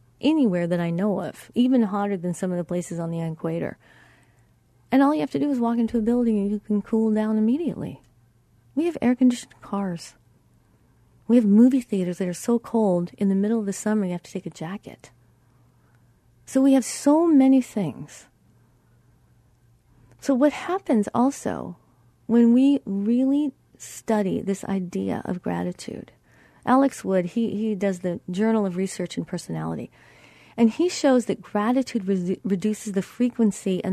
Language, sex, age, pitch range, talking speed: English, female, 30-49, 175-245 Hz, 165 wpm